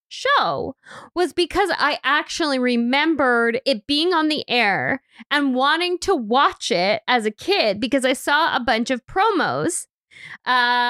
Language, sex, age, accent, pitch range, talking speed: English, female, 20-39, American, 240-305 Hz, 150 wpm